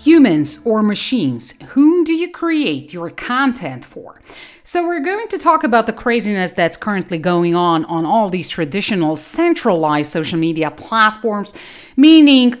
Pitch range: 170-240 Hz